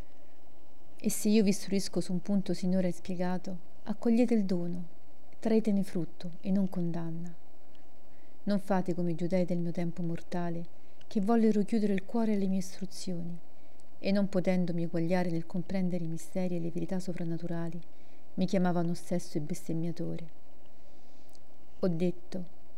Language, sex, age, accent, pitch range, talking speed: Italian, female, 40-59, native, 175-205 Hz, 140 wpm